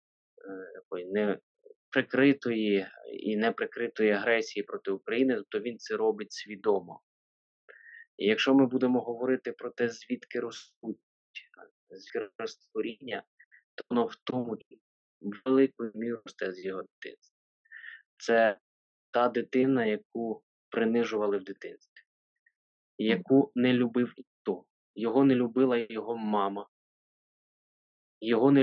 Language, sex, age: Ukrainian, male, 20-39